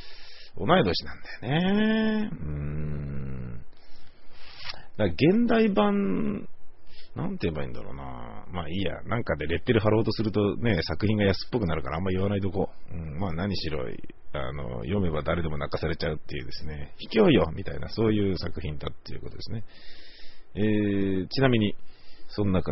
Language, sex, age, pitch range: Japanese, male, 40-59, 75-105 Hz